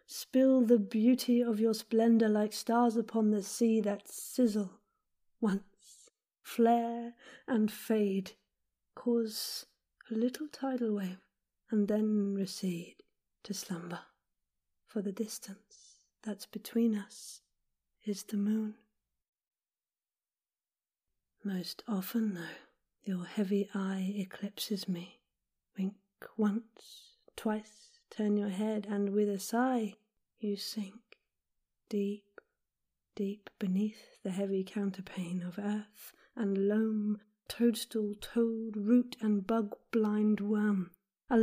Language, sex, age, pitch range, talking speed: English, female, 40-59, 205-230 Hz, 105 wpm